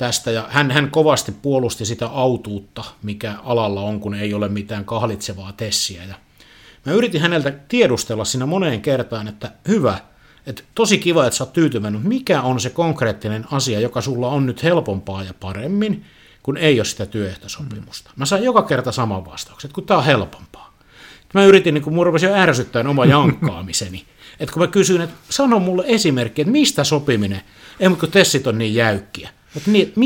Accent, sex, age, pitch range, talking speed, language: native, male, 50-69, 105-160 Hz, 170 wpm, Finnish